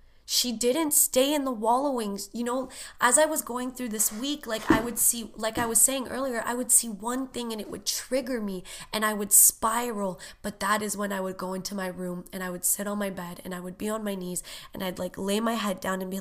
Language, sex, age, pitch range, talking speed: English, female, 20-39, 190-230 Hz, 265 wpm